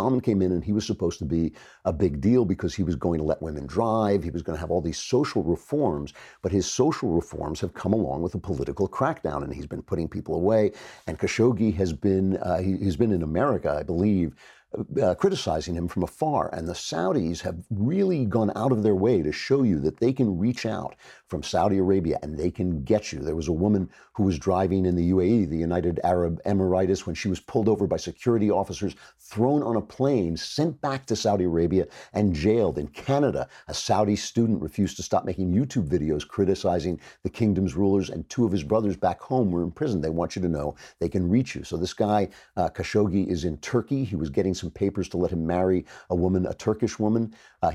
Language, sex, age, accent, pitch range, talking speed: English, male, 50-69, American, 85-105 Hz, 220 wpm